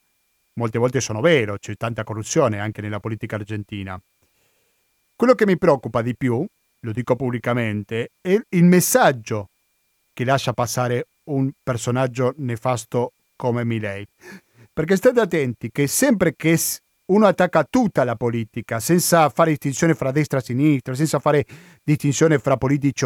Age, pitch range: 40-59, 120-165 Hz